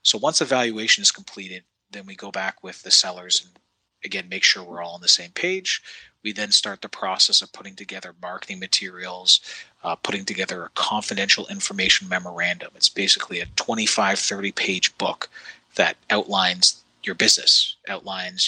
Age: 30-49